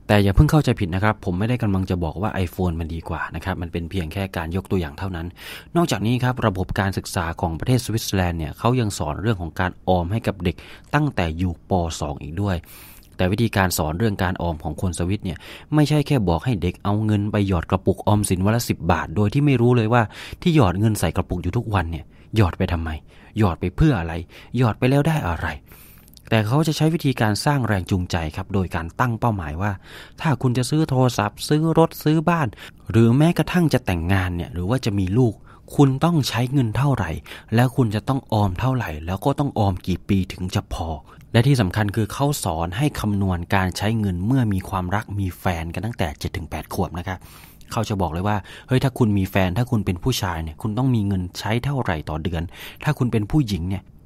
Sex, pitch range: male, 90-125 Hz